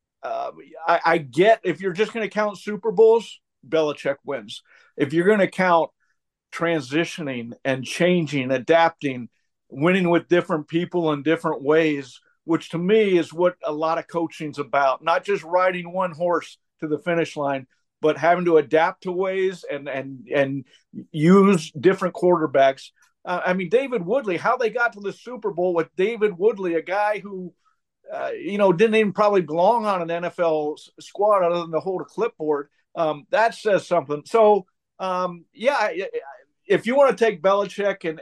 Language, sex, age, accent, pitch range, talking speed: English, male, 50-69, American, 155-200 Hz, 180 wpm